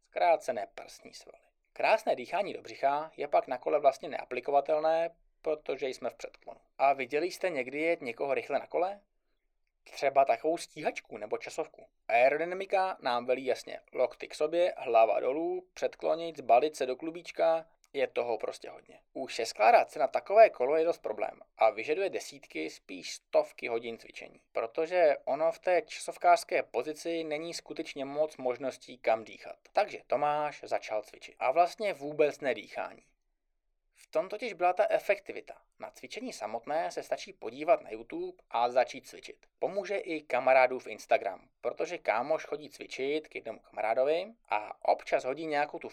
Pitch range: 140-205 Hz